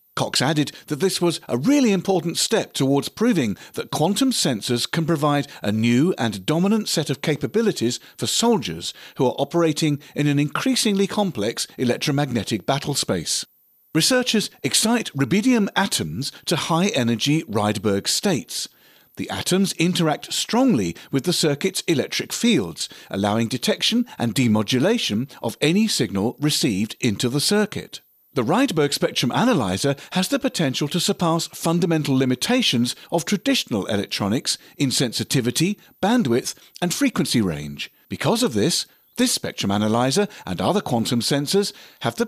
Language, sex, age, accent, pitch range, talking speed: English, male, 40-59, British, 130-205 Hz, 135 wpm